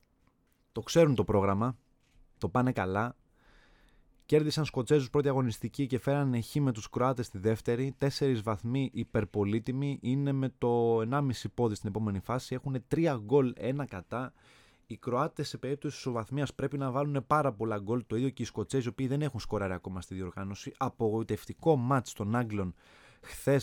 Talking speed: 165 wpm